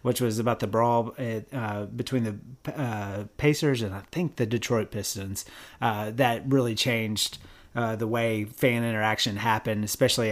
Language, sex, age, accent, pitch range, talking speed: English, male, 30-49, American, 115-135 Hz, 165 wpm